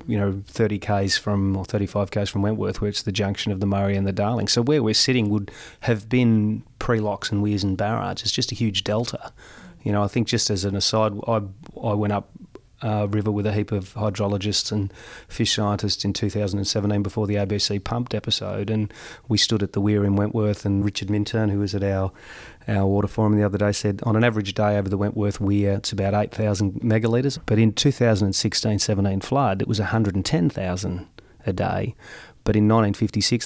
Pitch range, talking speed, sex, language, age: 100-110 Hz, 200 wpm, male, English, 30-49